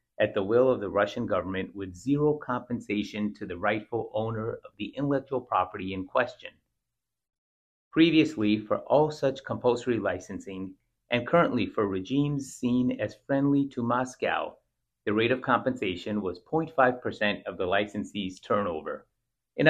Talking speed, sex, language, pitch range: 140 wpm, male, English, 105-135 Hz